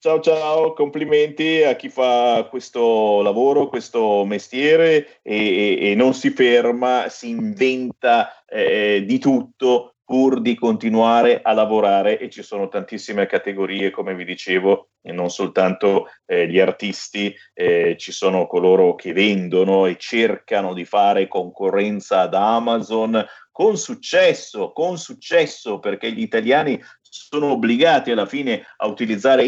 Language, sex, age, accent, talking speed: Italian, male, 30-49, native, 135 wpm